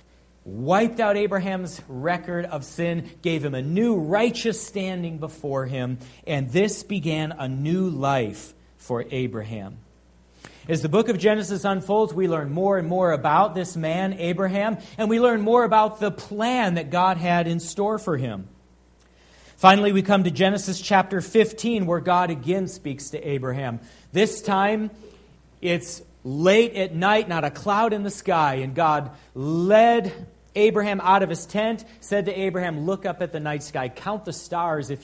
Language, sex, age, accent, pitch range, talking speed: English, male, 40-59, American, 130-190 Hz, 165 wpm